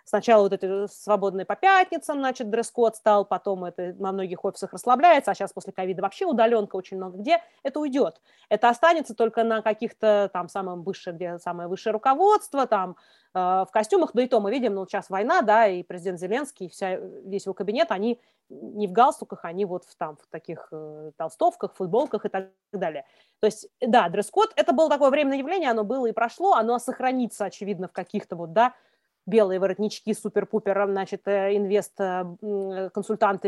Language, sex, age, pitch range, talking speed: Russian, female, 30-49, 195-245 Hz, 175 wpm